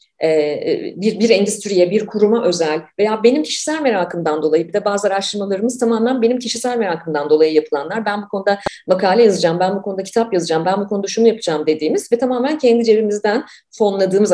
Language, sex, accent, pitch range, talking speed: Turkish, female, native, 180-240 Hz, 180 wpm